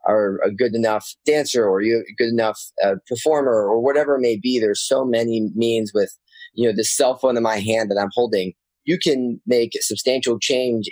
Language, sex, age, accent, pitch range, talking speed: English, male, 20-39, American, 105-125 Hz, 215 wpm